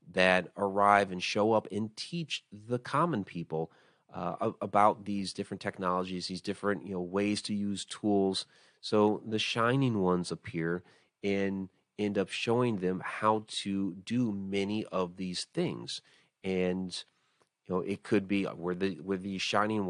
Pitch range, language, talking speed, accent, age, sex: 90-105 Hz, English, 155 wpm, American, 30-49, male